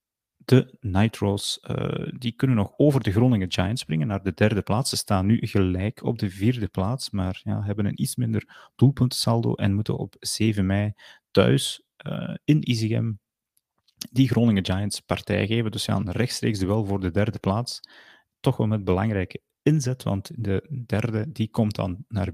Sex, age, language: male, 30-49, Dutch